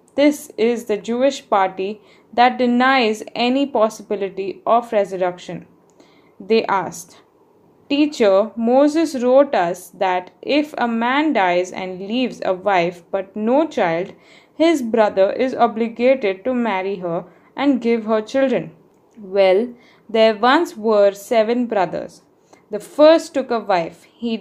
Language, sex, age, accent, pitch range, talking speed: English, female, 20-39, Indian, 200-265 Hz, 130 wpm